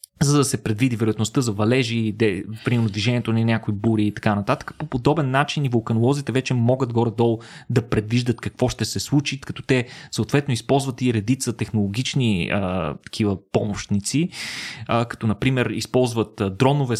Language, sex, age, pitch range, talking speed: Bulgarian, male, 20-39, 105-130 Hz, 155 wpm